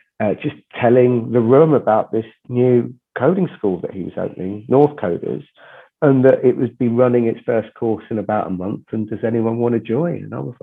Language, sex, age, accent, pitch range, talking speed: English, male, 40-59, British, 105-135 Hz, 215 wpm